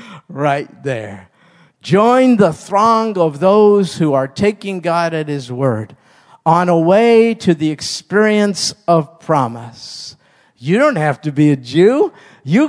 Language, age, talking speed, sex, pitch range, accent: English, 50-69, 140 wpm, male, 145-190 Hz, American